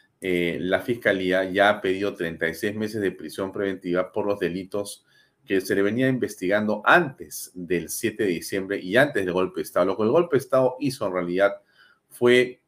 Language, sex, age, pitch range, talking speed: Spanish, male, 40-59, 90-105 Hz, 190 wpm